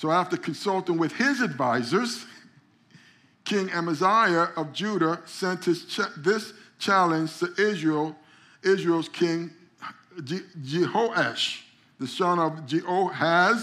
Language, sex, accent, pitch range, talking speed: English, male, American, 140-175 Hz, 110 wpm